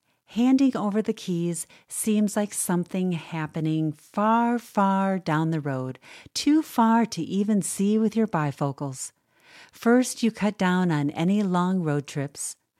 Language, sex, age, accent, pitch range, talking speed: English, female, 50-69, American, 160-220 Hz, 140 wpm